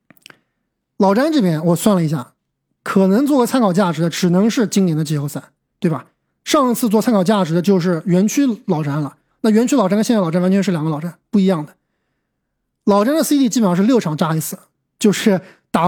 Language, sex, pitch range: Chinese, male, 180-240 Hz